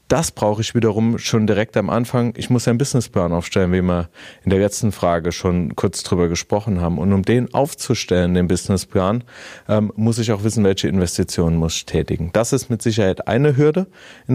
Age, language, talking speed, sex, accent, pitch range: 30-49, German, 190 wpm, male, German, 95-115 Hz